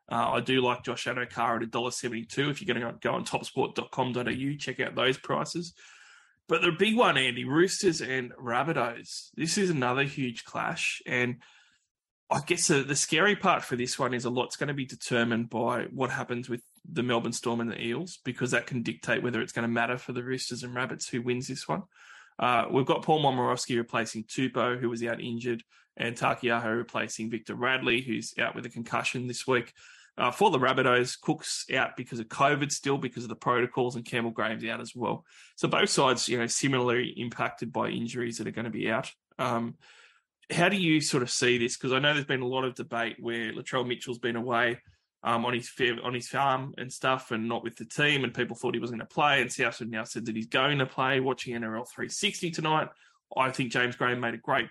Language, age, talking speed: English, 20-39, 220 wpm